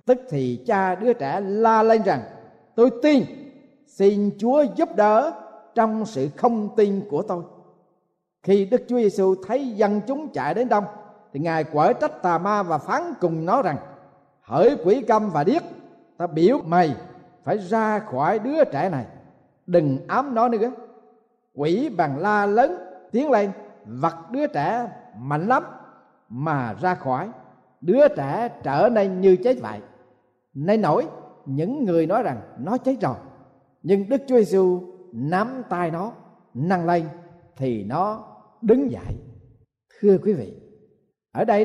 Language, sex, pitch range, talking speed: Vietnamese, male, 155-230 Hz, 155 wpm